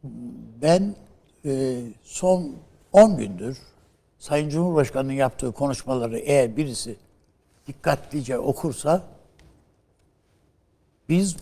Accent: native